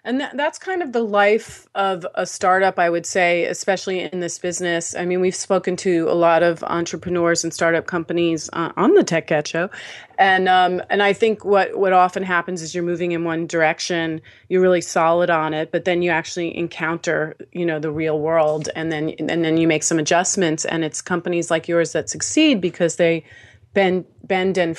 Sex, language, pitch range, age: female, English, 165-190 Hz, 30-49